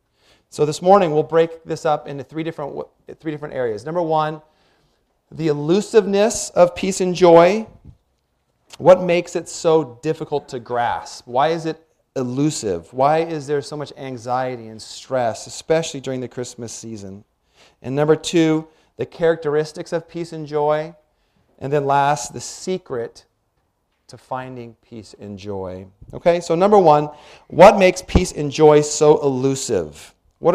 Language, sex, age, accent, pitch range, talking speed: English, male, 40-59, American, 130-165 Hz, 145 wpm